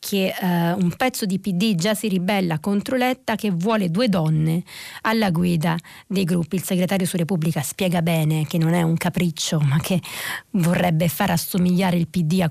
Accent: native